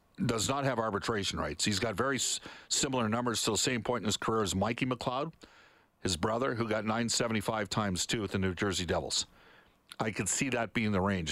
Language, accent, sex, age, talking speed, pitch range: English, American, male, 50-69, 215 wpm, 95-125 Hz